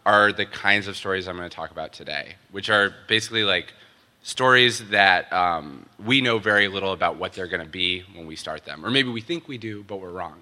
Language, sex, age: English, male, 20-39